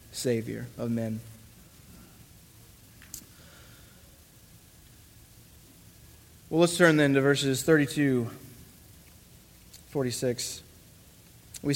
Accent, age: American, 30-49